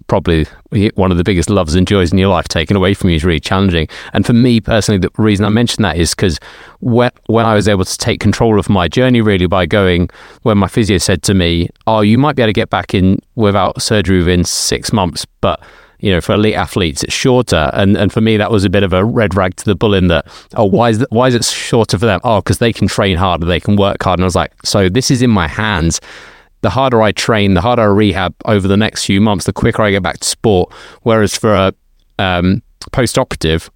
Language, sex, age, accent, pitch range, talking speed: English, male, 30-49, British, 90-110 Hz, 250 wpm